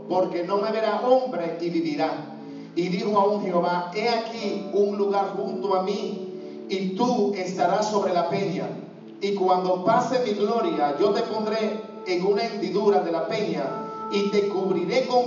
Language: Spanish